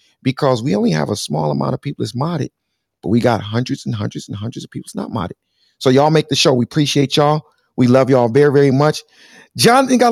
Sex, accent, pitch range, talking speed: male, American, 130-180 Hz, 235 wpm